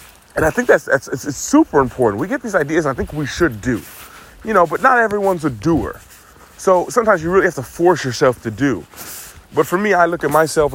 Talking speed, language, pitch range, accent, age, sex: 235 wpm, English, 115-160 Hz, American, 30-49, male